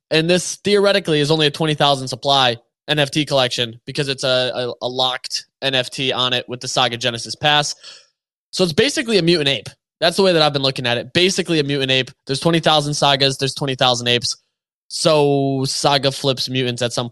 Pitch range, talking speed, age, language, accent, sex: 135-170 Hz, 190 wpm, 20-39, English, American, male